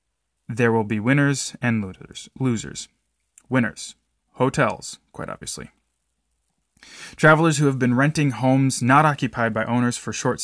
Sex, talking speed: male, 125 wpm